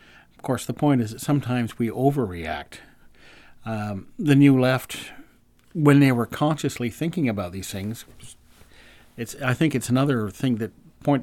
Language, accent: English, American